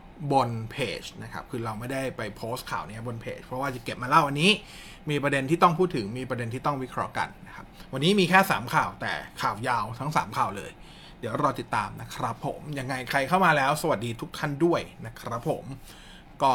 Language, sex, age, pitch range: Thai, male, 20-39, 115-155 Hz